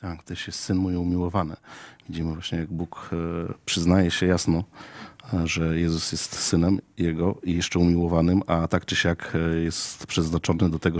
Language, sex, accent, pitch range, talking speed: Polish, male, native, 85-95 Hz, 160 wpm